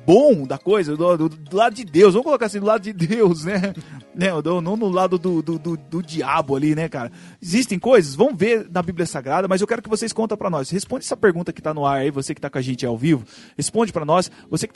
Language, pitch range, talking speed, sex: Portuguese, 160-215 Hz, 270 wpm, male